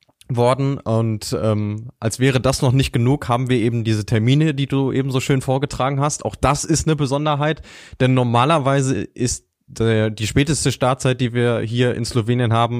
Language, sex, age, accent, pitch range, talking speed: German, male, 20-39, German, 115-140 Hz, 180 wpm